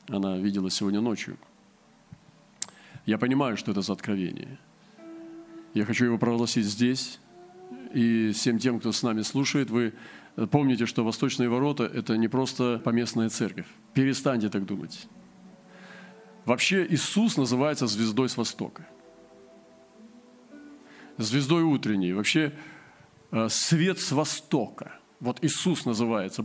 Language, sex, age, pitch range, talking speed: Russian, male, 40-59, 115-155 Hz, 115 wpm